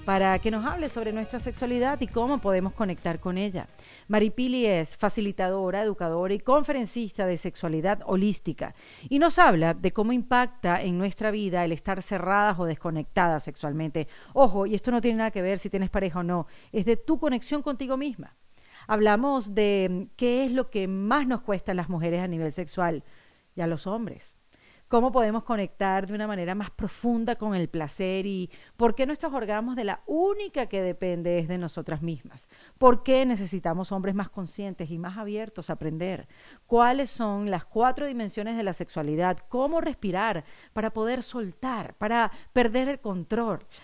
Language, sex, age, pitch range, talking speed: Spanish, female, 40-59, 185-245 Hz, 175 wpm